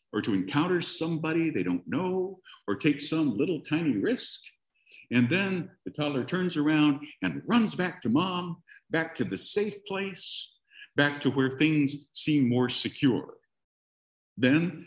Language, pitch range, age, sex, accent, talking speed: English, 130-185 Hz, 60-79, male, American, 150 wpm